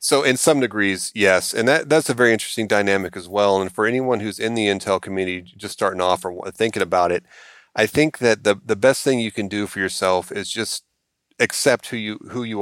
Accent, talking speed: American, 230 wpm